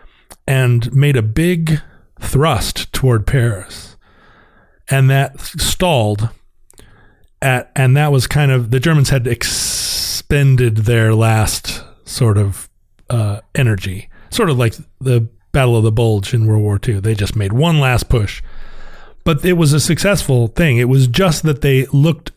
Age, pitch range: 40-59, 110-135 Hz